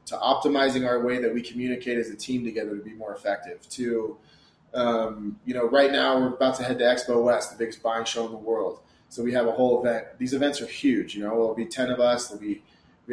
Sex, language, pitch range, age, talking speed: male, English, 115-140 Hz, 20-39, 255 wpm